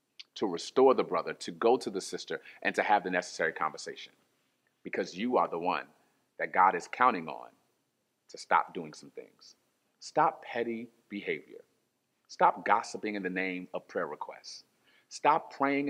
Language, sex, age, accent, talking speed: English, male, 40-59, American, 160 wpm